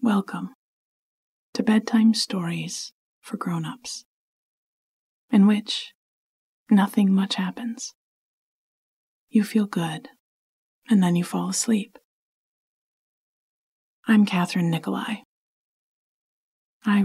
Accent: American